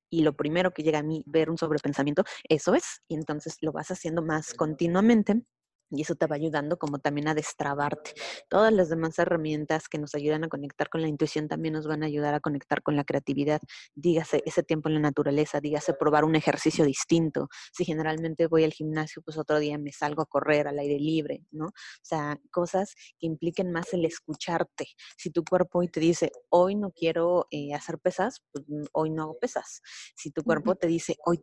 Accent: Mexican